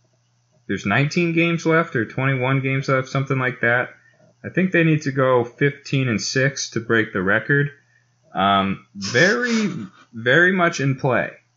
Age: 20-39